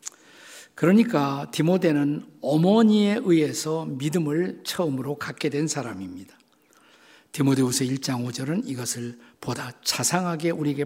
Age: 50-69